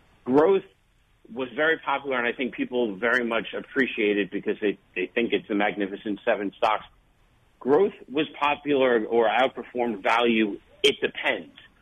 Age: 40-59